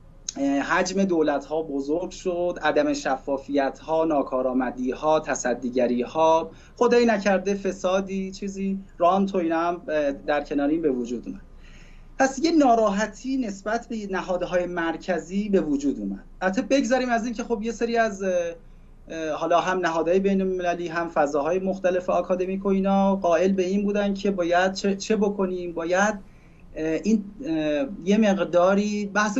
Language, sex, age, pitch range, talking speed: Persian, male, 30-49, 155-200 Hz, 140 wpm